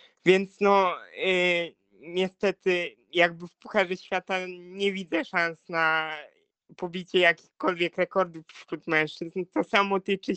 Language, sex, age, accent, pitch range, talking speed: Polish, male, 20-39, native, 170-200 Hz, 110 wpm